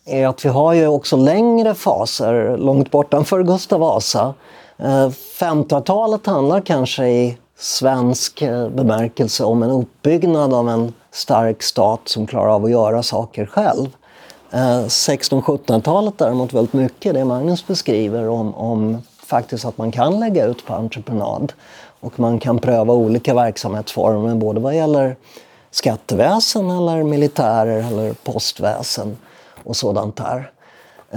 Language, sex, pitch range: Swedish, male, 115-150 Hz